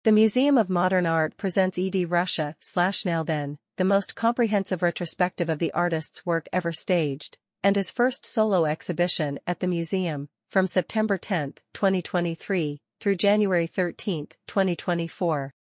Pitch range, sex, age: 165-200 Hz, female, 40-59